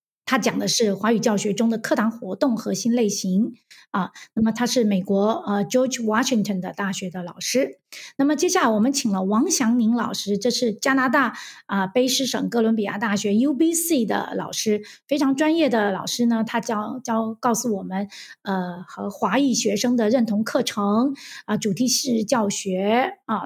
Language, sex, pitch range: Chinese, female, 205-260 Hz